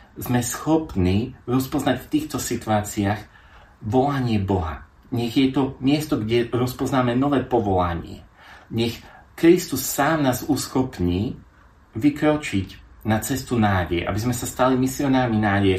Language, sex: Slovak, male